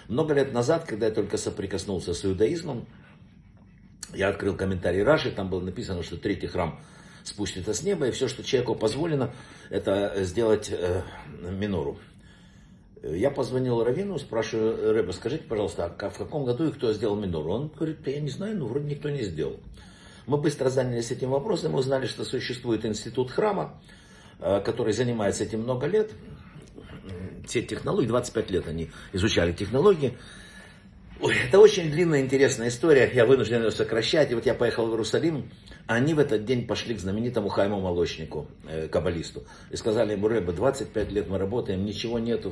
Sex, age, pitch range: male, 60-79, 100-135 Hz